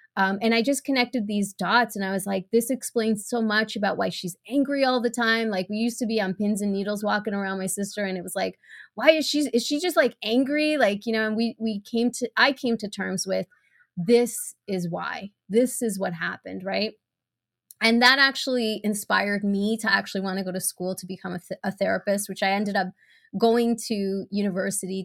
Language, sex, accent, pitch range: English, female, American, 190-230 Hz